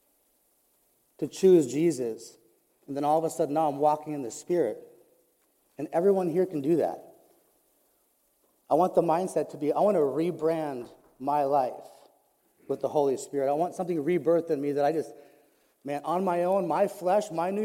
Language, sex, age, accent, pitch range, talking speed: English, male, 30-49, American, 155-205 Hz, 185 wpm